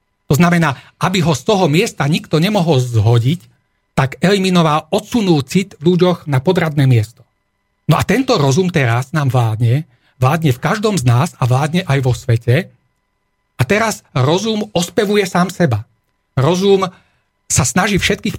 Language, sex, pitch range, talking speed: Slovak, male, 130-180 Hz, 145 wpm